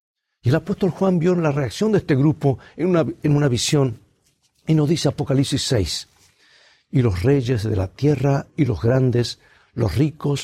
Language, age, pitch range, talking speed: Spanish, 60-79, 115-155 Hz, 170 wpm